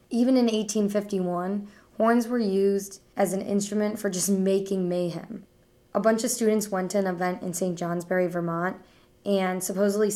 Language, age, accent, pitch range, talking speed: English, 10-29, American, 185-210 Hz, 160 wpm